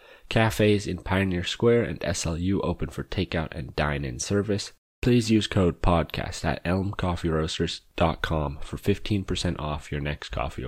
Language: English